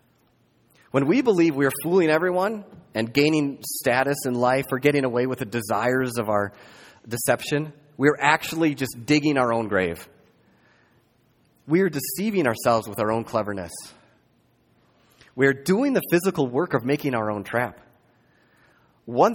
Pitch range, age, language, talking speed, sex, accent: 110-150 Hz, 30-49, English, 150 wpm, male, American